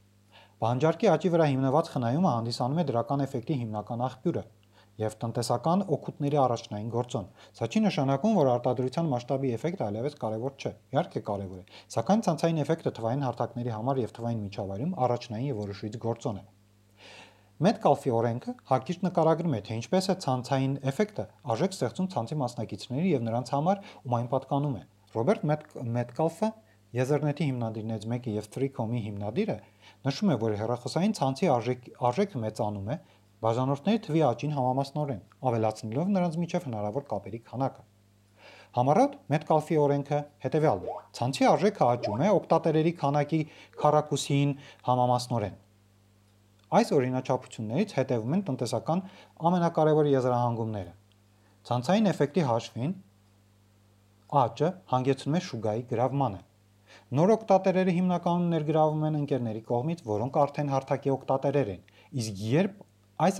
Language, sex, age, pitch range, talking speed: Russian, male, 40-59, 110-150 Hz, 65 wpm